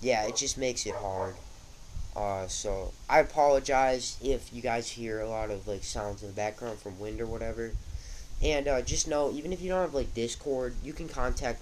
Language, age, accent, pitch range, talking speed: English, 20-39, American, 95-125 Hz, 205 wpm